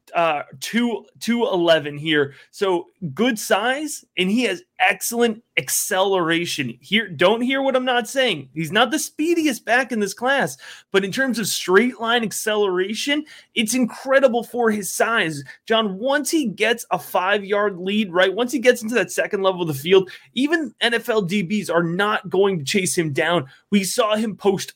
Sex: male